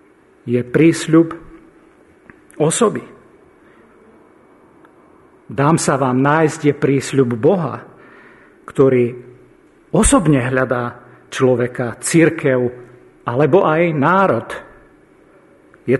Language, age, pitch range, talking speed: Slovak, 50-69, 135-185 Hz, 70 wpm